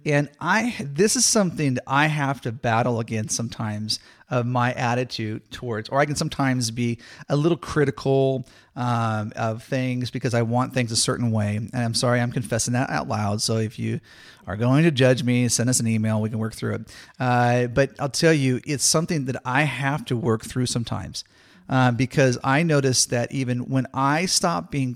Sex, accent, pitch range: male, American, 115-135 Hz